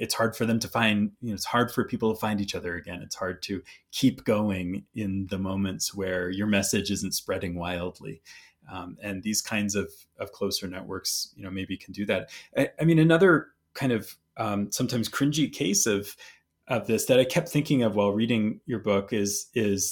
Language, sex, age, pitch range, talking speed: English, male, 30-49, 95-115 Hz, 210 wpm